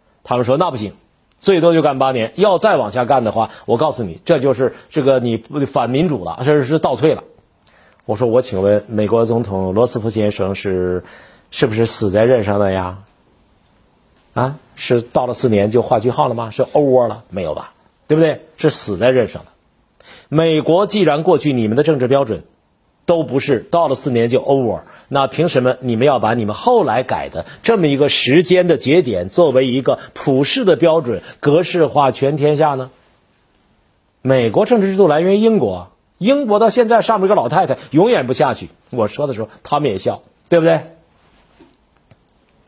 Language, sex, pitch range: Chinese, male, 115-160 Hz